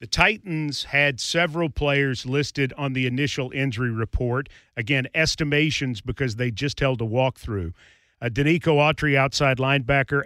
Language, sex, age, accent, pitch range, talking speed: English, male, 40-59, American, 130-155 Hz, 140 wpm